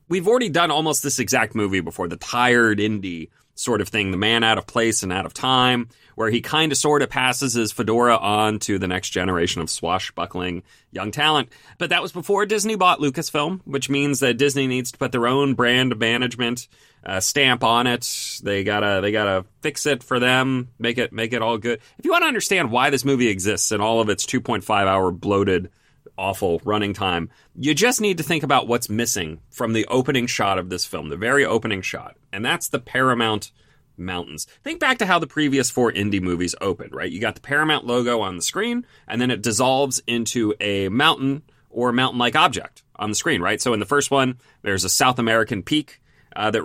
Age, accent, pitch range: 30-49, American, 105-140 Hz